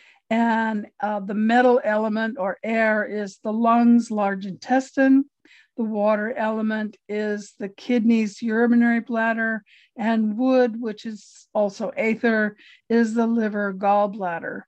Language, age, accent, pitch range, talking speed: English, 50-69, American, 210-235 Hz, 125 wpm